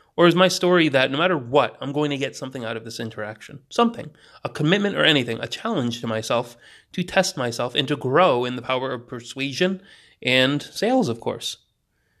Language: English